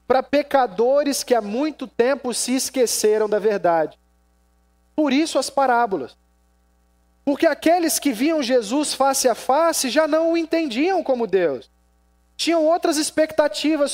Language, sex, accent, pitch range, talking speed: Portuguese, male, Brazilian, 205-285 Hz, 135 wpm